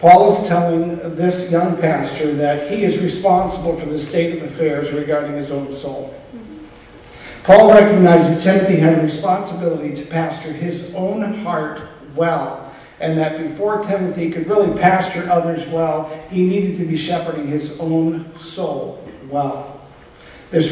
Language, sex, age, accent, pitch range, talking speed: English, male, 50-69, American, 155-185 Hz, 150 wpm